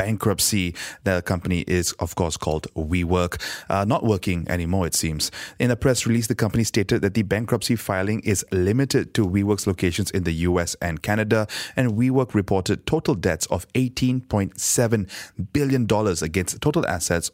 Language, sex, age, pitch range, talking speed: English, male, 20-39, 90-110 Hz, 160 wpm